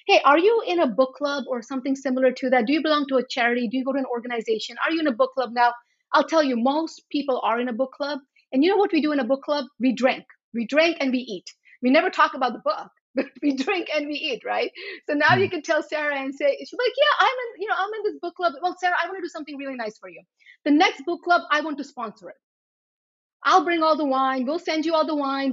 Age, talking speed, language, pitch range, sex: 30-49, 285 wpm, English, 260-335 Hz, female